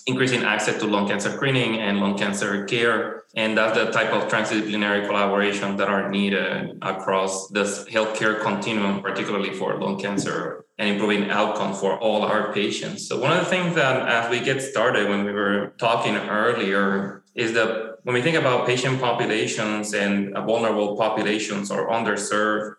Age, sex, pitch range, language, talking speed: 20-39, male, 100-115 Hz, English, 165 wpm